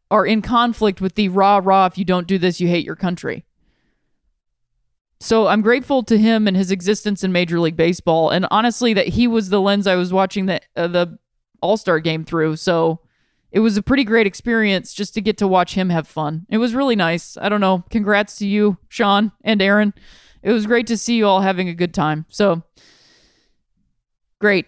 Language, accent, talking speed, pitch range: English, American, 205 wpm, 185-225 Hz